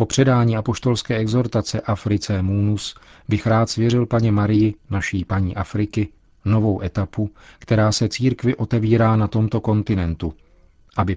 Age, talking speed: 40-59, 130 wpm